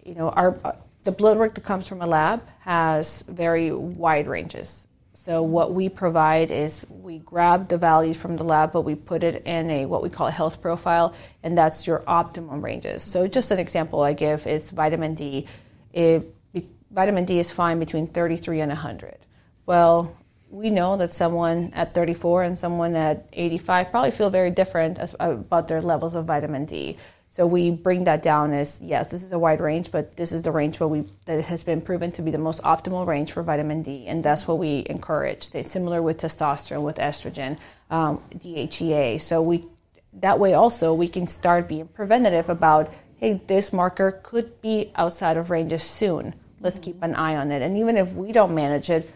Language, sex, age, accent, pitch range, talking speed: English, female, 30-49, American, 155-180 Hz, 200 wpm